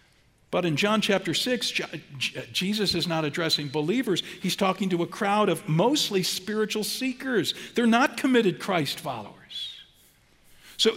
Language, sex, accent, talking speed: English, male, American, 135 wpm